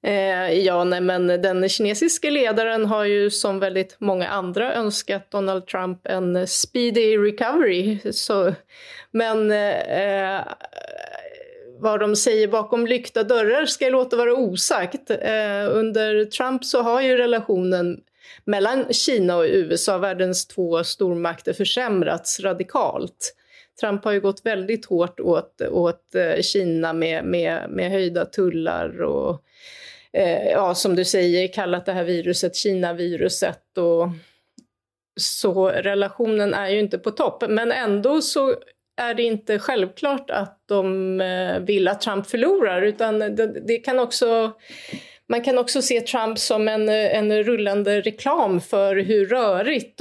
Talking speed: 135 wpm